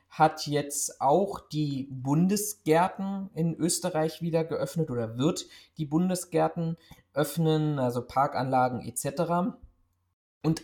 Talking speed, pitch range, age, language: 100 wpm, 130-160 Hz, 20-39, German